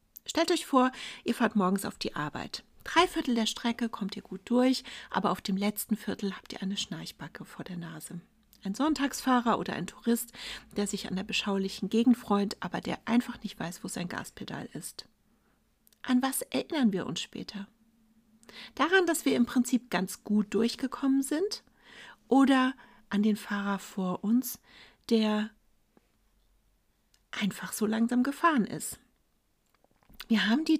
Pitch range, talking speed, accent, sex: 200-245 Hz, 155 wpm, German, female